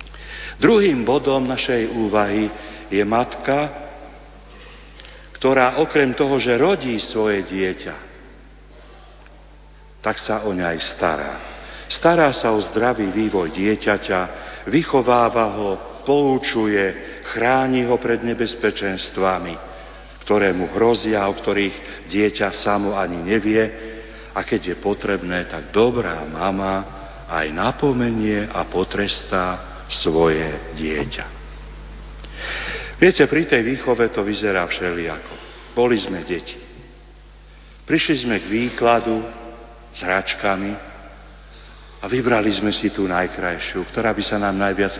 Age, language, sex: 60-79, Slovak, male